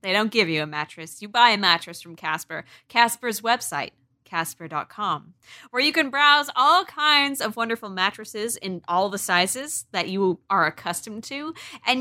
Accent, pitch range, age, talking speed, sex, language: American, 180-260 Hz, 20-39, 170 wpm, female, English